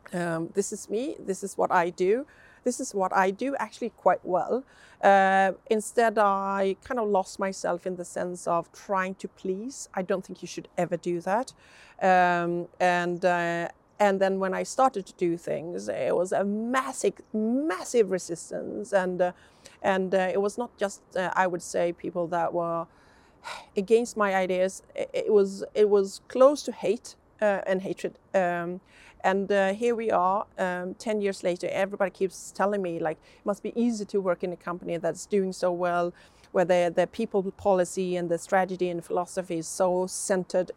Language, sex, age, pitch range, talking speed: English, female, 40-59, 180-210 Hz, 185 wpm